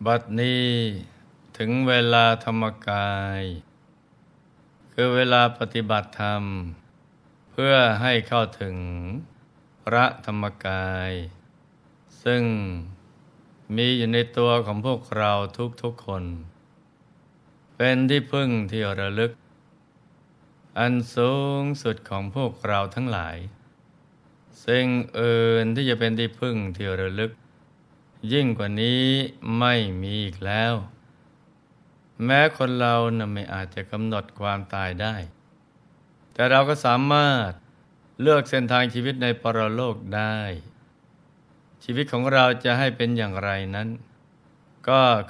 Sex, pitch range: male, 105-130 Hz